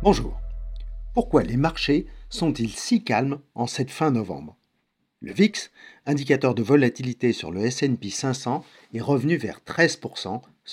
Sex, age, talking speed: male, 50-69, 135 wpm